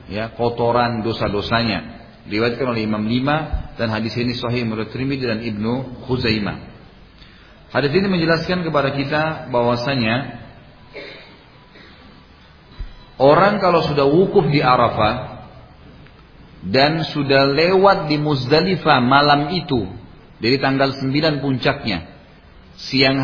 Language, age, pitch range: Indonesian, 40-59, 115-145 Hz